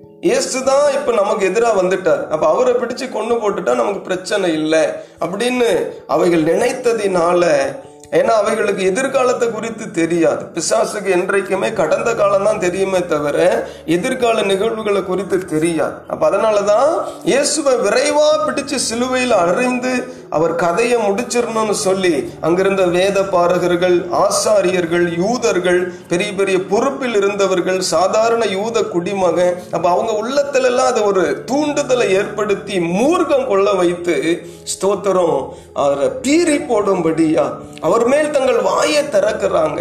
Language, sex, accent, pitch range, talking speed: Tamil, male, native, 185-265 Hz, 85 wpm